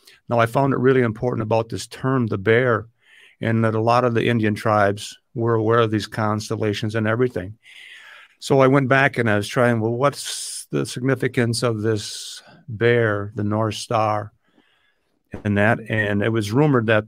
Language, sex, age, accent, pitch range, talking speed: English, male, 50-69, American, 105-120 Hz, 180 wpm